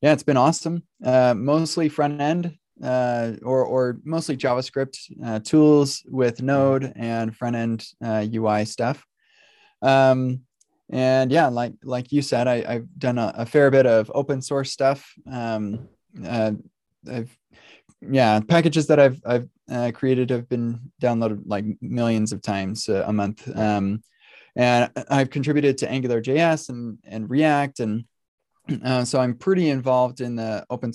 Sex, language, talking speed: male, Hebrew, 145 wpm